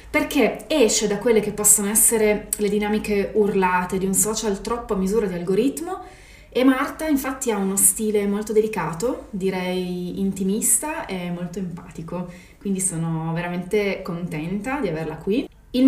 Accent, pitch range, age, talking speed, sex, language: native, 185-230 Hz, 30-49, 145 wpm, female, Italian